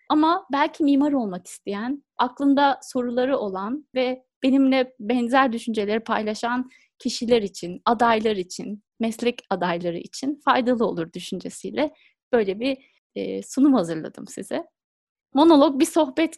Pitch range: 215-280 Hz